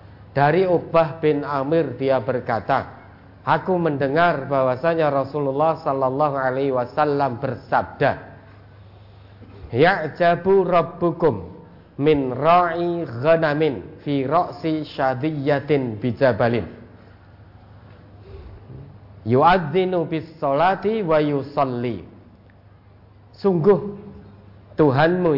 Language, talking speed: Indonesian, 70 wpm